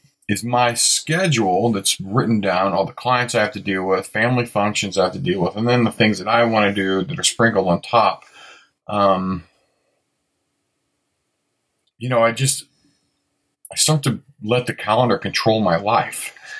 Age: 40-59